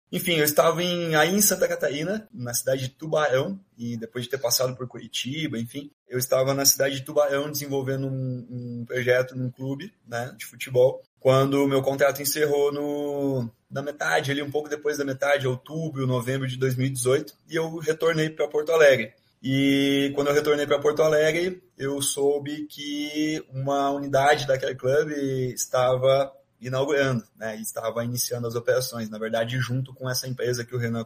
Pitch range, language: 120-150 Hz, Portuguese